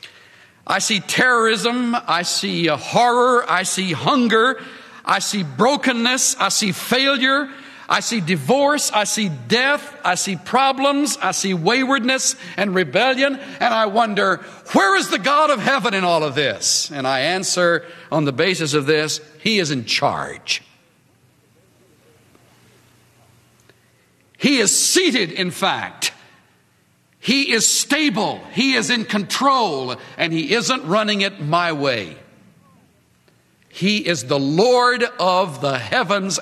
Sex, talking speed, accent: male, 130 wpm, American